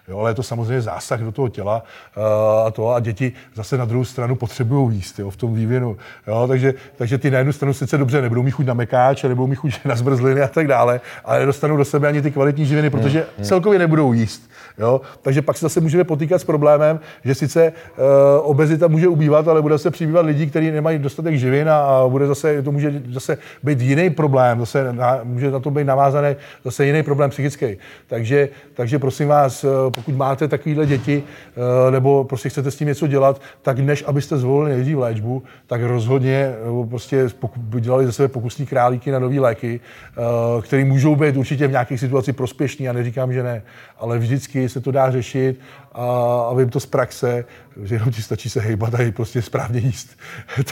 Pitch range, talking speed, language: 125-145 Hz, 205 wpm, Czech